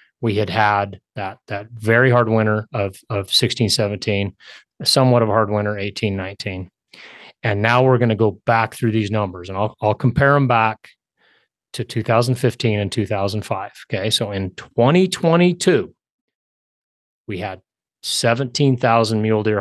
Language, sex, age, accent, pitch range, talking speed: English, male, 30-49, American, 100-120 Hz, 170 wpm